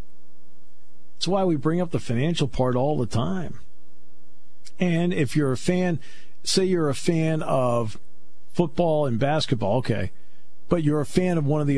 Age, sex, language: 50-69, male, English